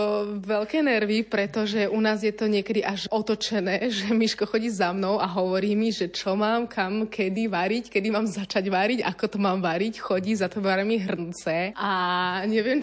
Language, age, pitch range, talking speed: Slovak, 20-39, 195-225 Hz, 180 wpm